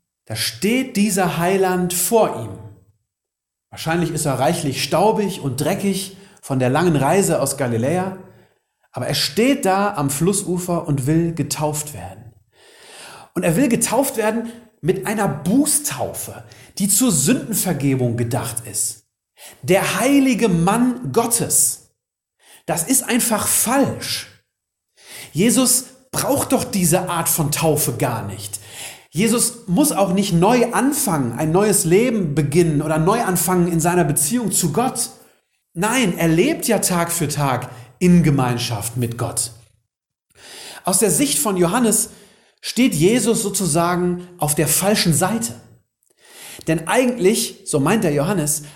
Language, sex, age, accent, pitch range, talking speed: German, male, 40-59, German, 135-205 Hz, 130 wpm